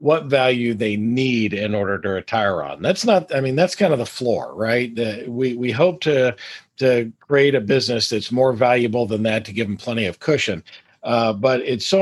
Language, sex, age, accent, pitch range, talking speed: English, male, 50-69, American, 110-140 Hz, 210 wpm